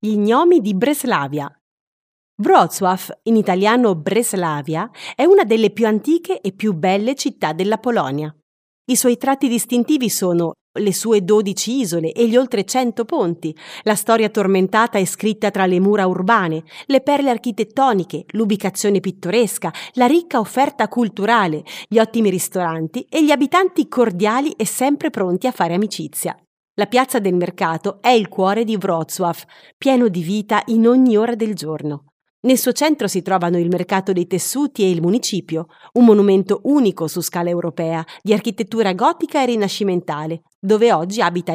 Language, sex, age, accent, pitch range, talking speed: Italian, female, 30-49, native, 180-240 Hz, 155 wpm